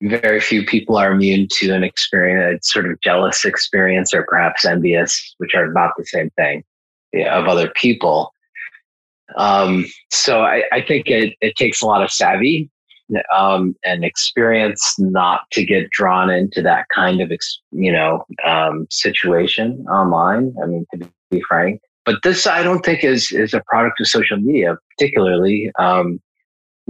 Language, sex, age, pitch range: English, male, 30-49, 85-105 Hz